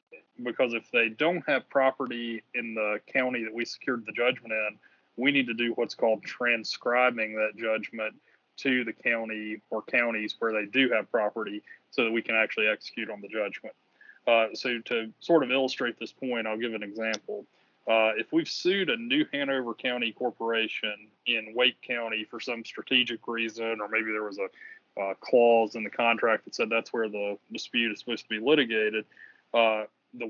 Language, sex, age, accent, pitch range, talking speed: English, male, 20-39, American, 110-125 Hz, 185 wpm